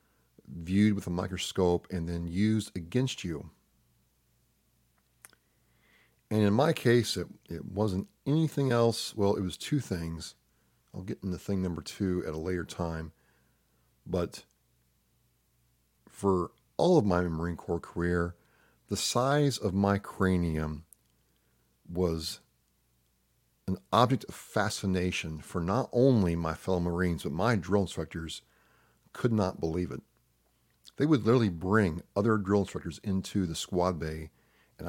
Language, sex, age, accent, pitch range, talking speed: English, male, 40-59, American, 75-100 Hz, 130 wpm